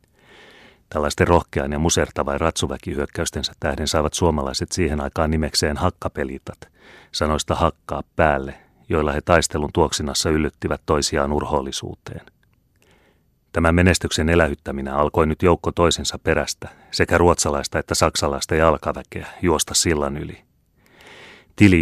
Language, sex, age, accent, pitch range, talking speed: Finnish, male, 30-49, native, 75-90 Hz, 105 wpm